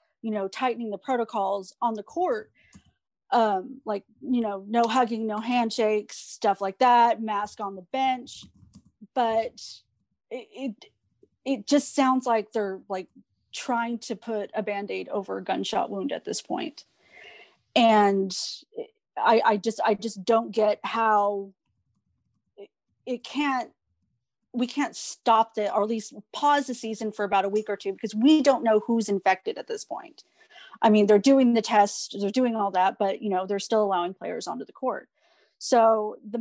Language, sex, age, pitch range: English, female, 30-49, 200-240 Hz